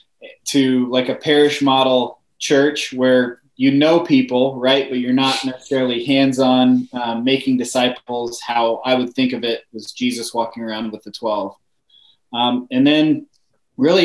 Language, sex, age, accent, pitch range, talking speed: English, male, 20-39, American, 115-140 Hz, 155 wpm